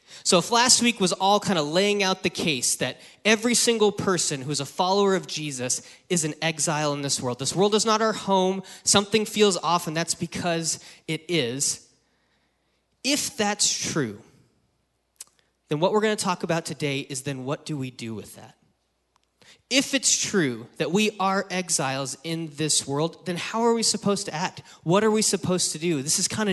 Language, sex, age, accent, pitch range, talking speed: English, male, 30-49, American, 145-200 Hz, 195 wpm